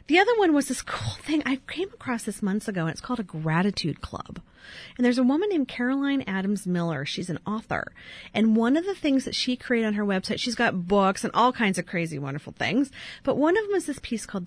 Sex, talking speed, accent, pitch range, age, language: female, 245 wpm, American, 185-260 Hz, 40-59, English